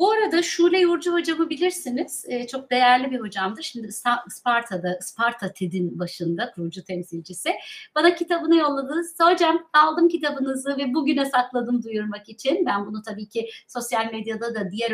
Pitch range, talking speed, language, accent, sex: 220-300 Hz, 145 wpm, Turkish, native, female